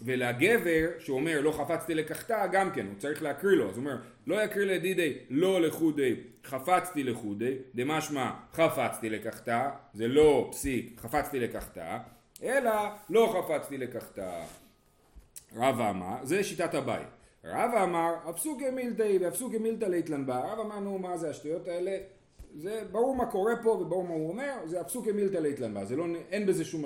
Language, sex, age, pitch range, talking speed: Hebrew, male, 40-59, 145-215 Hz, 75 wpm